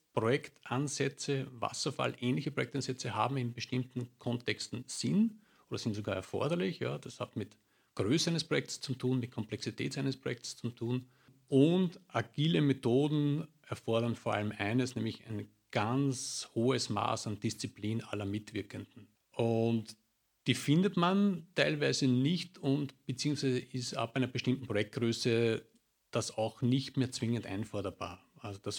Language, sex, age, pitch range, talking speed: German, male, 50-69, 110-135 Hz, 135 wpm